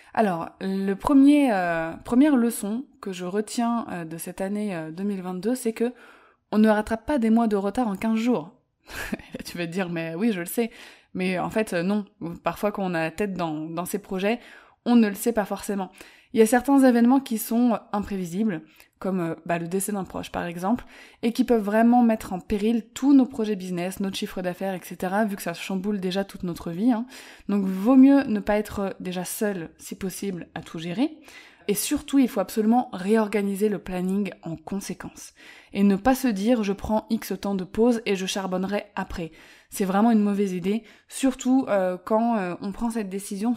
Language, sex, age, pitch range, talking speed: French, female, 20-39, 190-235 Hz, 210 wpm